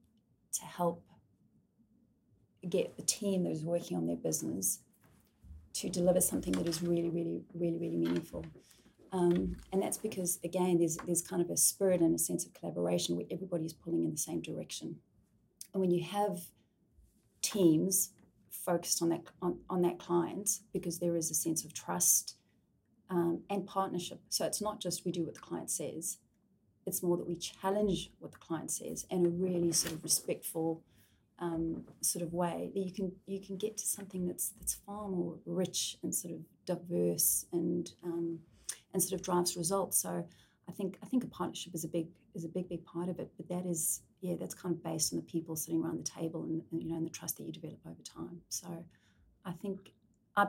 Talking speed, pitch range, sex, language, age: 200 wpm, 165-185 Hz, female, English, 30-49